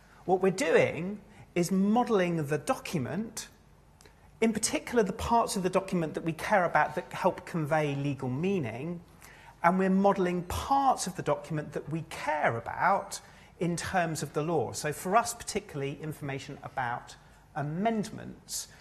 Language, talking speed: English, 145 wpm